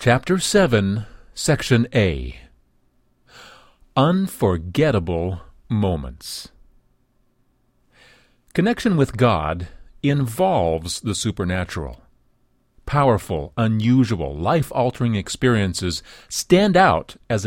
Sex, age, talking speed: male, 40-59, 65 wpm